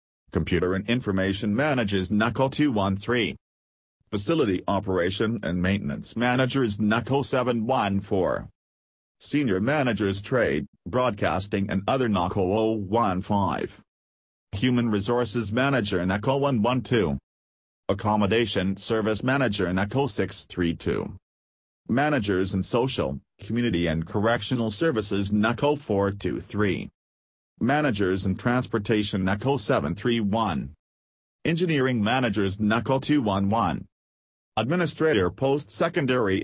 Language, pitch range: English, 95-120 Hz